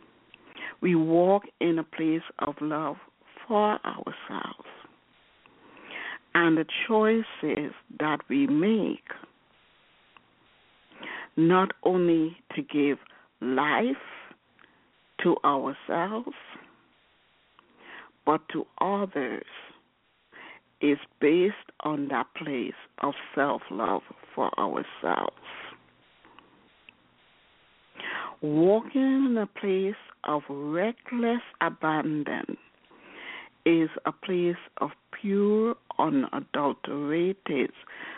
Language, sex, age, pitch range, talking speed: English, female, 60-79, 150-220 Hz, 75 wpm